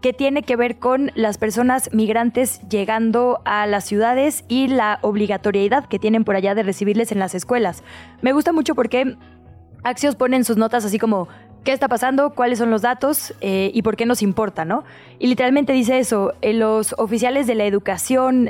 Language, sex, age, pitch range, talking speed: Spanish, female, 20-39, 205-245 Hz, 190 wpm